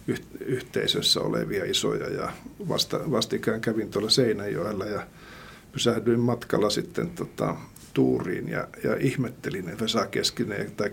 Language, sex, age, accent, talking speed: Finnish, male, 50-69, native, 110 wpm